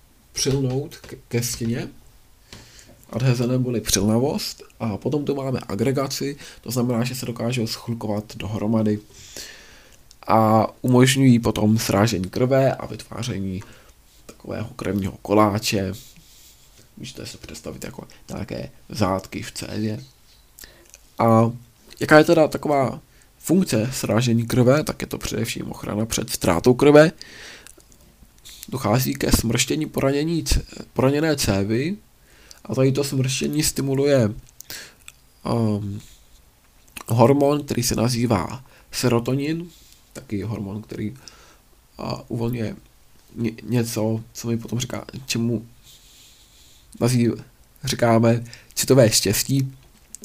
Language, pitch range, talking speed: Czech, 110-130 Hz, 100 wpm